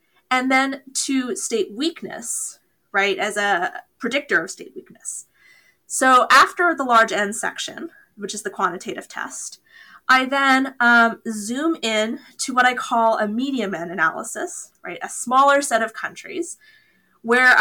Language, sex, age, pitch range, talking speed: English, female, 20-39, 205-285 Hz, 145 wpm